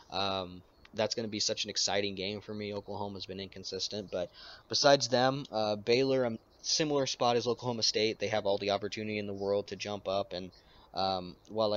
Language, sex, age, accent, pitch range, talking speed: English, male, 20-39, American, 95-110 Hz, 200 wpm